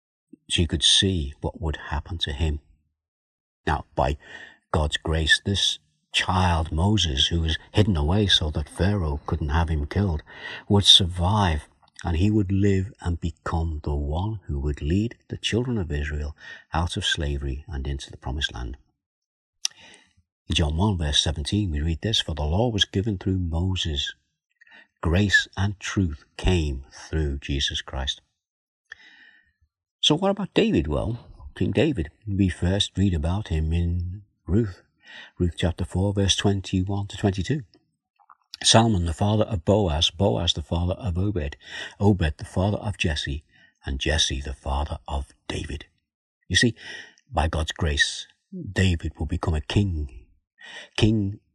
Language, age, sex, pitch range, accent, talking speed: English, 50-69, male, 75-100 Hz, British, 145 wpm